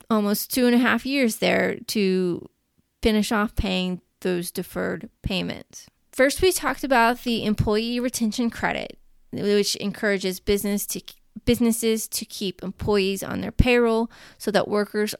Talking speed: 140 wpm